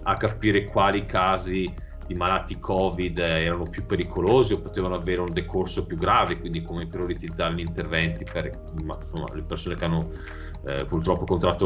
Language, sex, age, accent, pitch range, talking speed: Italian, male, 30-49, native, 85-105 Hz, 155 wpm